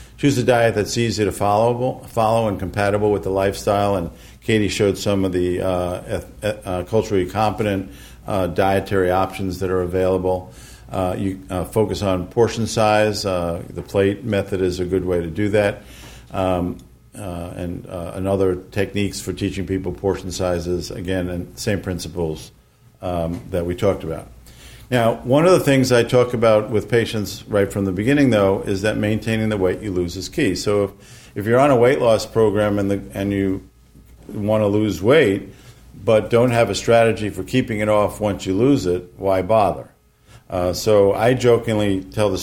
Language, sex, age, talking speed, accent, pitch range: English, male, 50-69, 180 wpm, American, 95-110 Hz